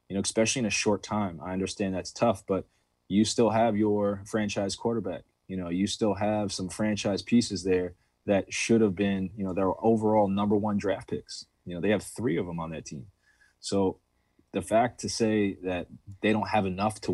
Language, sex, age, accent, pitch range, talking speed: English, male, 20-39, American, 90-110 Hz, 210 wpm